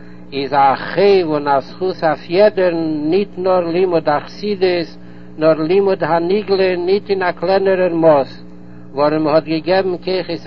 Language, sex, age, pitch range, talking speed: Hebrew, male, 60-79, 140-170 Hz, 105 wpm